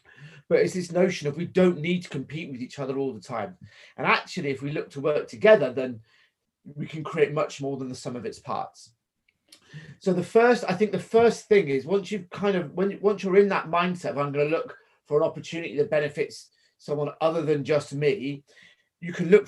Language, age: English, 40-59